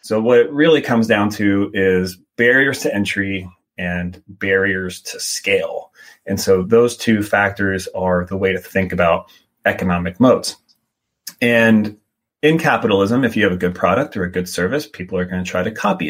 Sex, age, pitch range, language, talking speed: male, 30-49, 90-115 Hz, English, 180 wpm